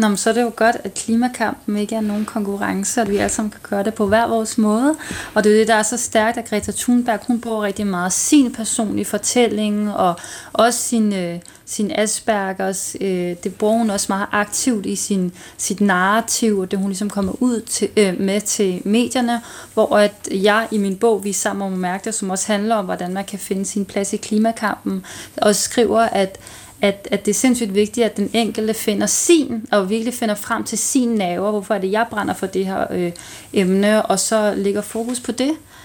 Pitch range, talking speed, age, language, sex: 200-225 Hz, 210 wpm, 30-49, Danish, female